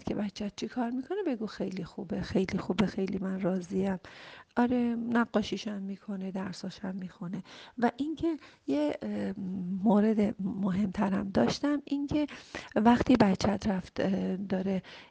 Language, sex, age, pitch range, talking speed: Persian, female, 40-59, 195-235 Hz, 115 wpm